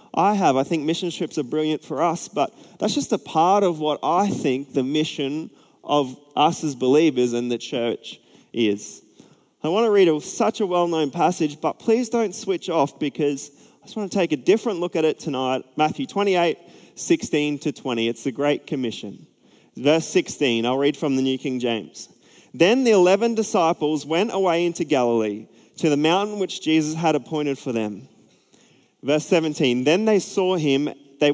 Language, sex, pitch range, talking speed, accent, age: English, male, 135-180 Hz, 180 wpm, Australian, 20-39